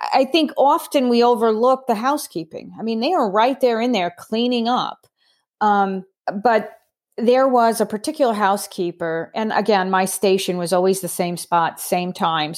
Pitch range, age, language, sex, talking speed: 170-220 Hz, 30-49, English, female, 165 wpm